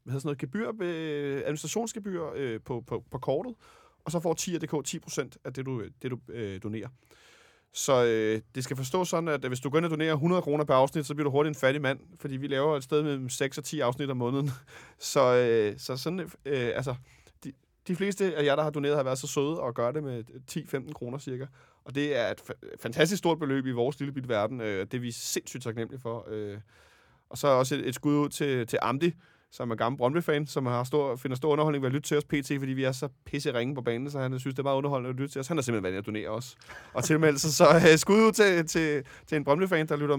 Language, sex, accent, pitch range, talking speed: Danish, male, native, 125-155 Hz, 260 wpm